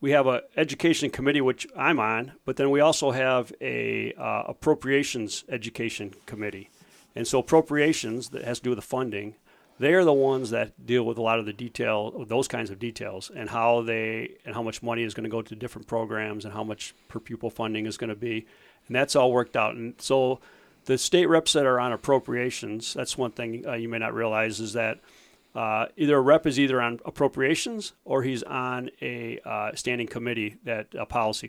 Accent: American